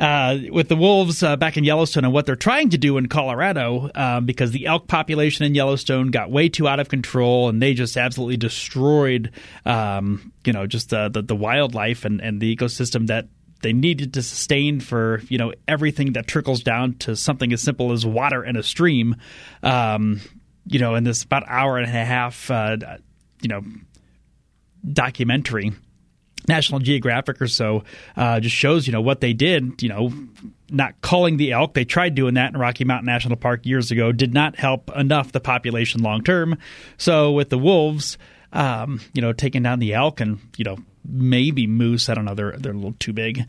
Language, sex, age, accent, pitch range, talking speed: English, male, 30-49, American, 115-145 Hz, 200 wpm